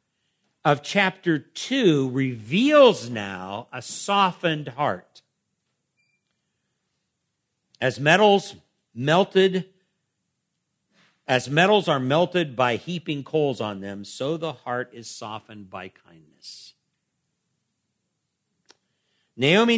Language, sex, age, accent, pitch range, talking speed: English, male, 50-69, American, 125-170 Hz, 85 wpm